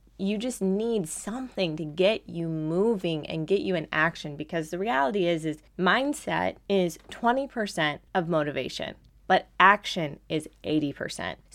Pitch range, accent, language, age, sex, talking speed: 160-205 Hz, American, English, 20-39, female, 140 wpm